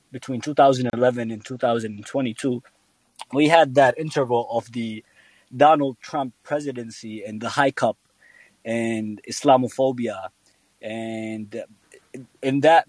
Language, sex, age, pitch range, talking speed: English, male, 20-39, 115-140 Hz, 100 wpm